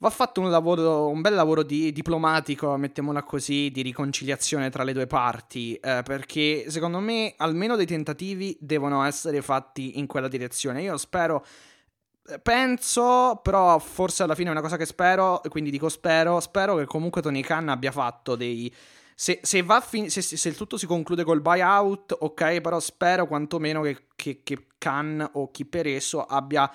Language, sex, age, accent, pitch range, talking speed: Italian, male, 20-39, native, 130-165 Hz, 175 wpm